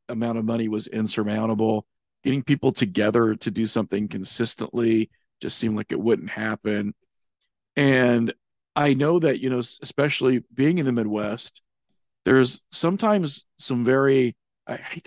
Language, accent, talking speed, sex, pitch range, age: English, American, 140 wpm, male, 110-130 Hz, 40-59